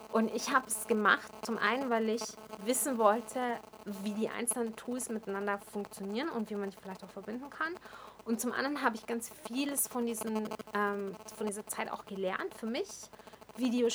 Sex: female